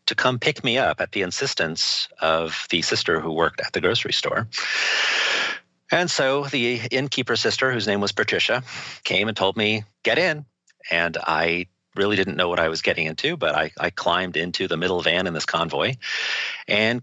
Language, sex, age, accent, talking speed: English, male, 40-59, American, 185 wpm